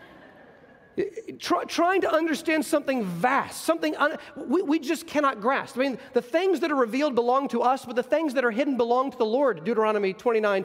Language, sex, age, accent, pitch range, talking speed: English, male, 40-59, American, 235-285 Hz, 195 wpm